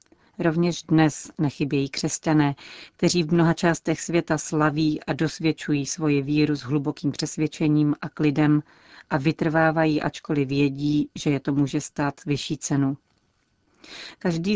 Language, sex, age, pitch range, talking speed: Czech, female, 40-59, 145-165 Hz, 130 wpm